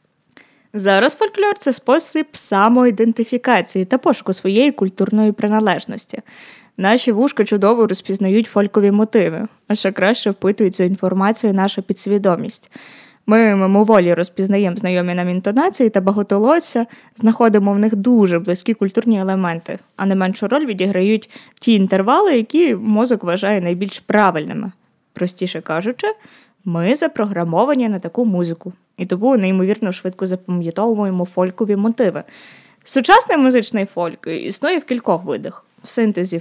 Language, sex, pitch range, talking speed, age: Ukrainian, female, 190-265 Hz, 125 wpm, 20-39